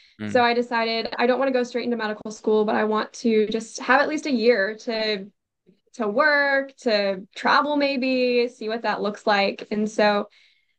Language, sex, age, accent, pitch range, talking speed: English, female, 10-29, American, 205-245 Hz, 200 wpm